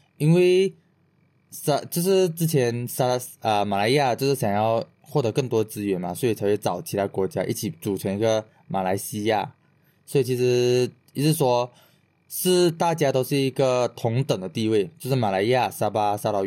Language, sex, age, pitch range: Chinese, male, 20-39, 110-150 Hz